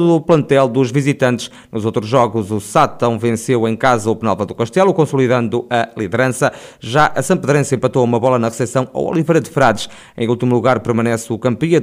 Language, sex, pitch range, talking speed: Portuguese, male, 115-140 Hz, 190 wpm